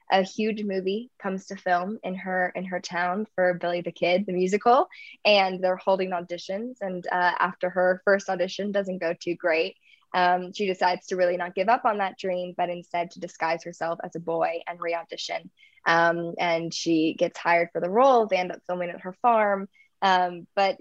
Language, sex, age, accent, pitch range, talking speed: English, female, 10-29, American, 175-195 Hz, 200 wpm